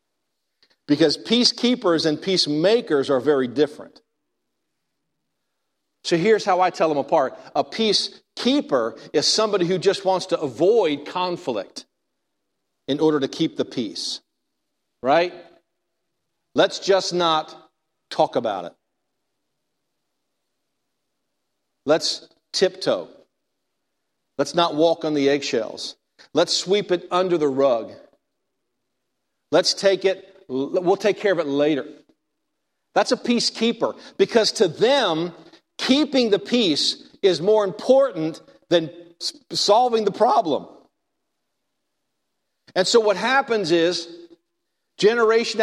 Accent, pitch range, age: American, 165-240 Hz, 50-69